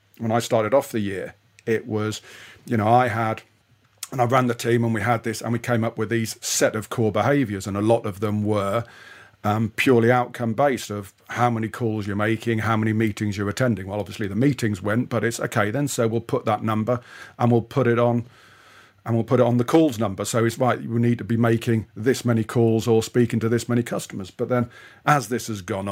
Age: 50-69